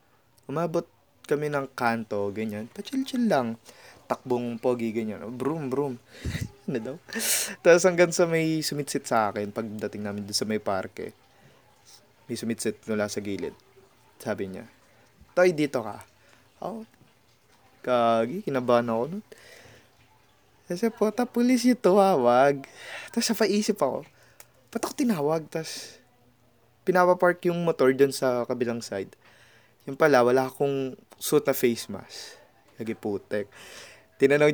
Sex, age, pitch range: male, 20-39, 115-150 Hz